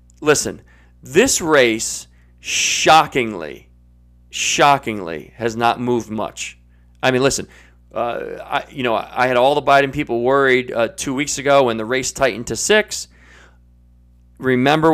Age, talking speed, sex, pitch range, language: 40-59, 140 wpm, male, 100-150 Hz, English